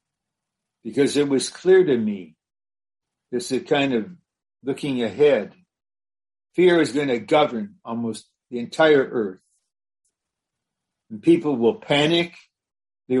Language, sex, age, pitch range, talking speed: English, male, 60-79, 115-160 Hz, 120 wpm